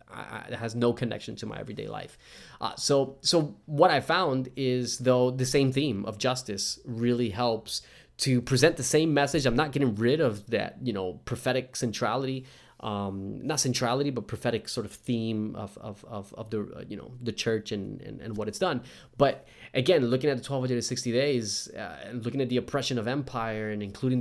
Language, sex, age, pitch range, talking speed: English, male, 20-39, 110-130 Hz, 200 wpm